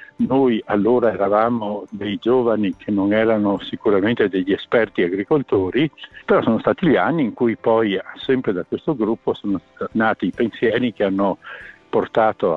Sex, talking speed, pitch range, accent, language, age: male, 150 wpm, 100-135 Hz, native, Italian, 60-79